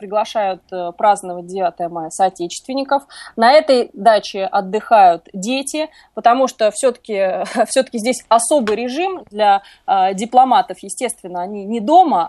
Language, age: Russian, 20-39